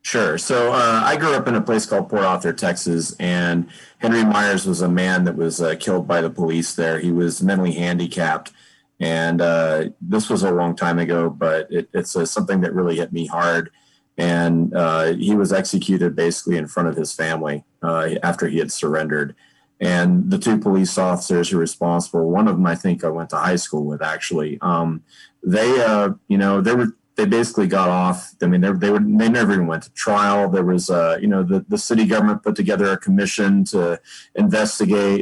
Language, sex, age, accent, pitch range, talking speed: English, male, 30-49, American, 85-105 Hz, 210 wpm